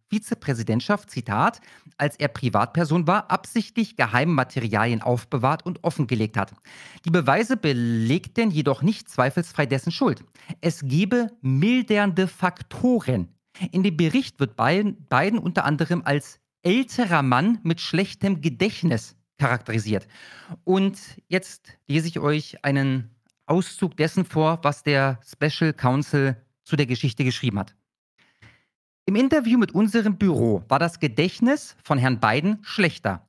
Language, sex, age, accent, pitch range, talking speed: German, male, 40-59, German, 130-185 Hz, 125 wpm